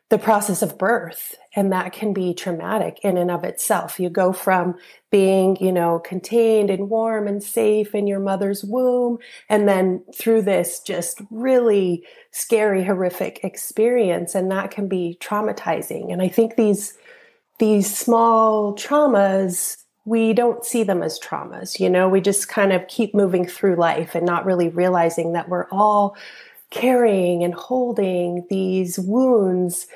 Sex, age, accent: female, 30-49, American